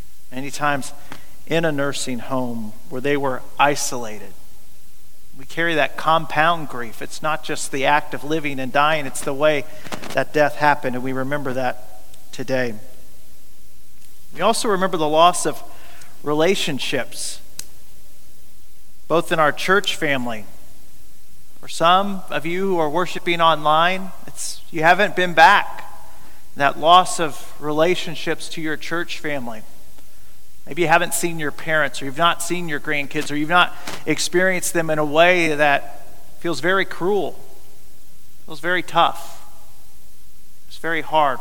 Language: English